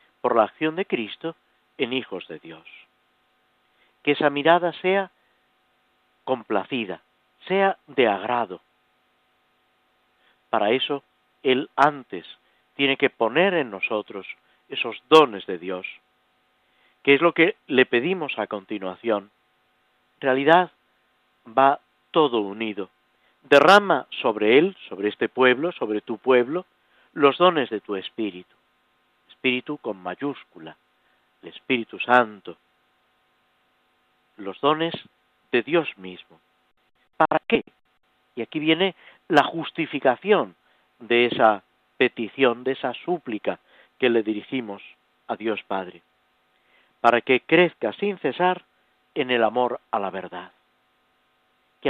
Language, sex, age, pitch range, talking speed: Spanish, male, 50-69, 105-160 Hz, 115 wpm